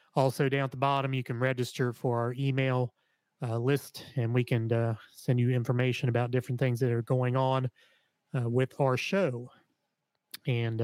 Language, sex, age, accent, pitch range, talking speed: English, male, 30-49, American, 120-145 Hz, 175 wpm